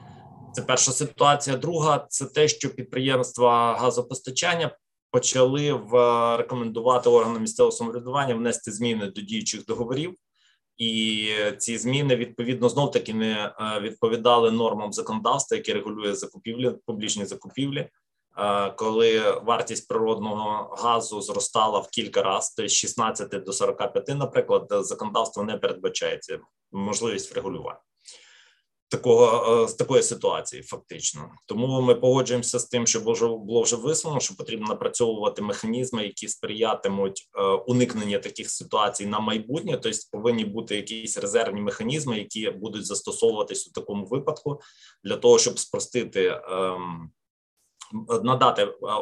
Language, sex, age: Ukrainian, male, 20-39